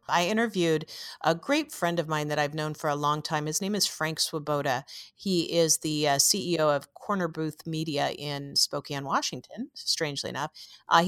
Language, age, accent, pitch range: English, 40-59, American, 150-200 Hz